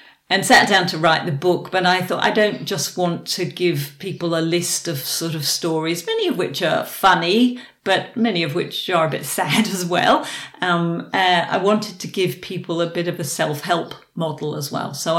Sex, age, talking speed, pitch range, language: female, 50-69, 215 wpm, 155-180 Hz, English